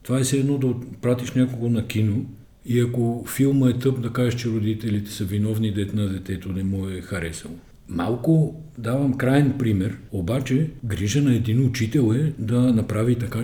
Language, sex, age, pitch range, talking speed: Bulgarian, male, 50-69, 100-120 Hz, 175 wpm